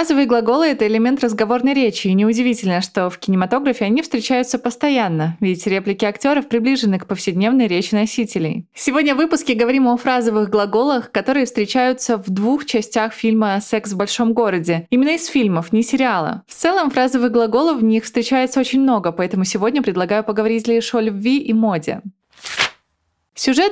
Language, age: Russian, 20-39